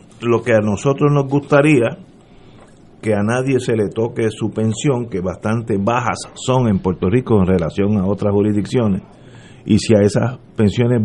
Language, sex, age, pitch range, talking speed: Spanish, male, 50-69, 100-130 Hz, 170 wpm